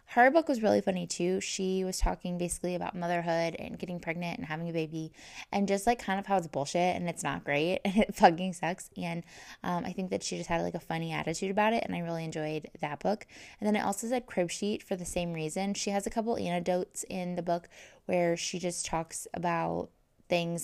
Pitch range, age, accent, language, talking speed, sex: 165-200 Hz, 20-39, American, English, 235 wpm, female